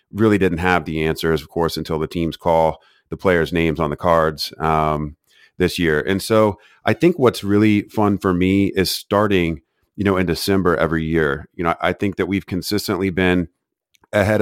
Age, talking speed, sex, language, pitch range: 30-49, 205 wpm, male, English, 85-105 Hz